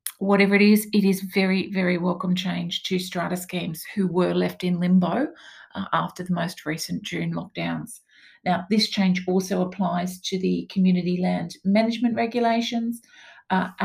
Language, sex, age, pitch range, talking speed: English, female, 40-59, 185-215 Hz, 155 wpm